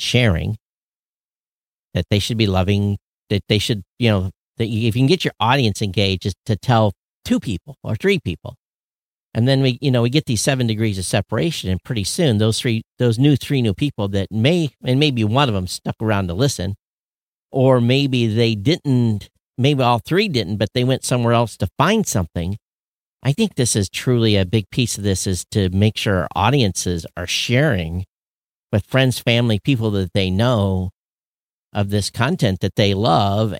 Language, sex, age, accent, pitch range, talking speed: English, male, 50-69, American, 95-125 Hz, 190 wpm